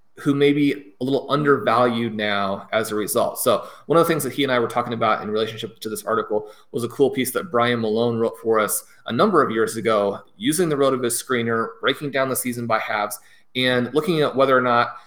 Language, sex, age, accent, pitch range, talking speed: English, male, 30-49, American, 120-145 Hz, 240 wpm